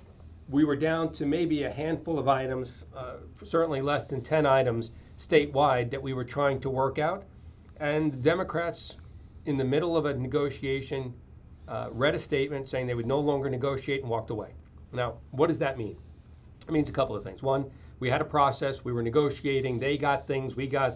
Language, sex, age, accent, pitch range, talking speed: English, male, 40-59, American, 115-145 Hz, 200 wpm